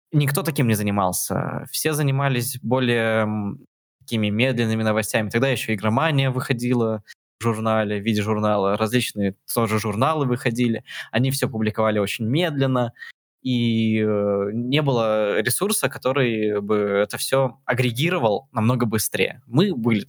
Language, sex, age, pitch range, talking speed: Russian, male, 20-39, 110-140 Hz, 125 wpm